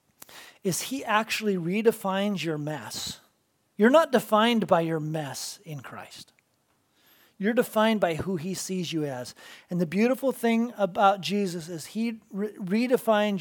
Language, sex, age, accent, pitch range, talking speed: English, male, 40-59, American, 165-205 Hz, 140 wpm